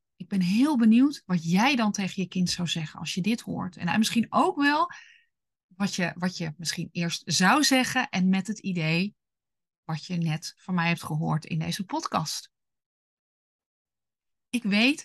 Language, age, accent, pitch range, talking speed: Dutch, 30-49, Dutch, 170-215 Hz, 170 wpm